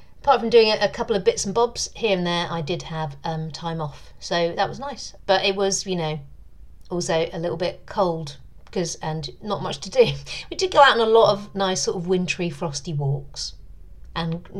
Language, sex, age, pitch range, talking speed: English, female, 40-59, 160-220 Hz, 220 wpm